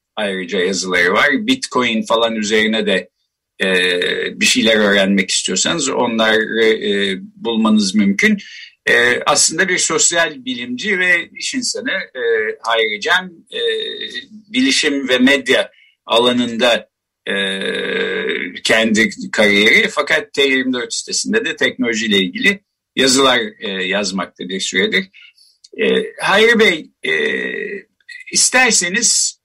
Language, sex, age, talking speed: Turkish, male, 50-69, 100 wpm